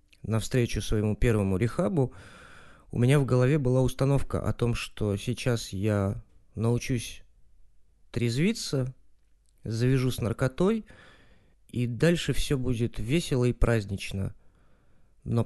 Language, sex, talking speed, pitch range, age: Russian, male, 110 wpm, 105-130 Hz, 30-49